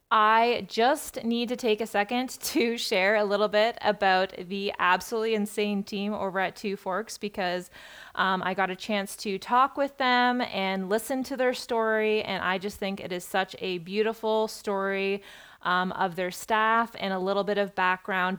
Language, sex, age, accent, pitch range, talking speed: English, female, 20-39, American, 190-235 Hz, 185 wpm